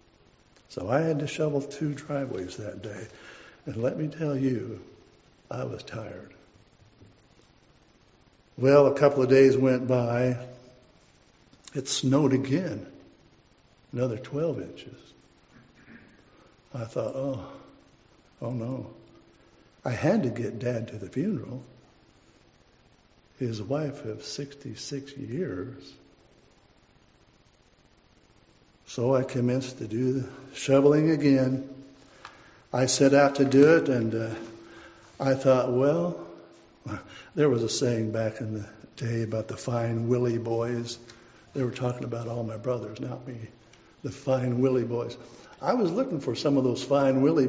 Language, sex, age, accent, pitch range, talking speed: English, male, 60-79, American, 115-140 Hz, 130 wpm